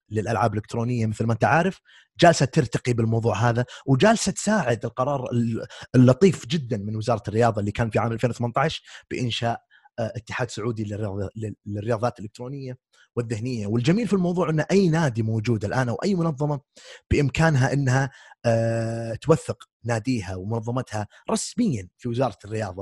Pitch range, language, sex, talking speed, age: 110-145 Hz, Arabic, male, 130 wpm, 30-49